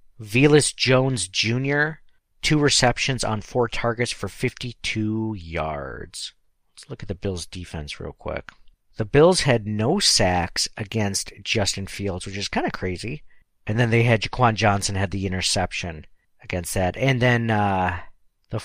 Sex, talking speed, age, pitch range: male, 150 wpm, 50-69, 100-125 Hz